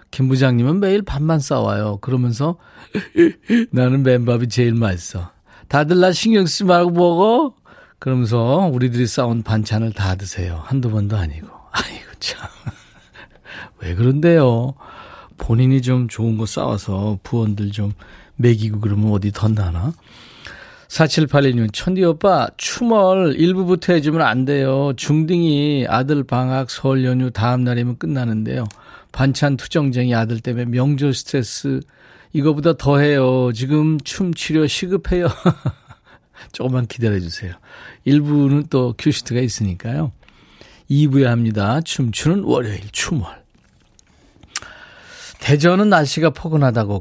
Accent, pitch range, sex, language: native, 110-150 Hz, male, Korean